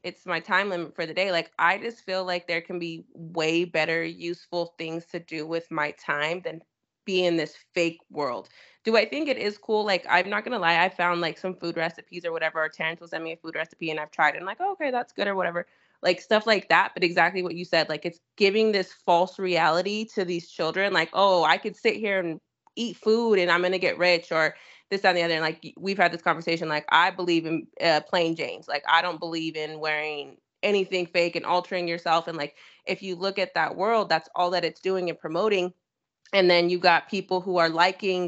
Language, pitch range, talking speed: English, 165-190 Hz, 240 wpm